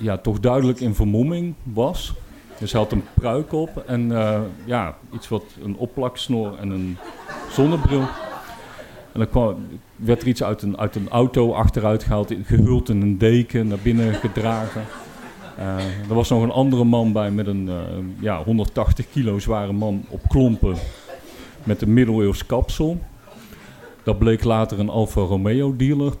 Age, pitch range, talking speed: 50-69, 100-120 Hz, 165 wpm